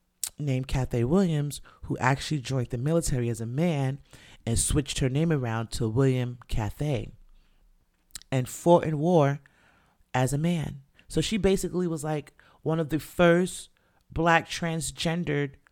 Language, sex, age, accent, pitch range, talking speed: English, male, 30-49, American, 125-160 Hz, 140 wpm